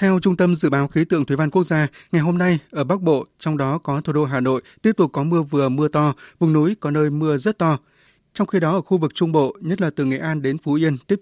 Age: 20-39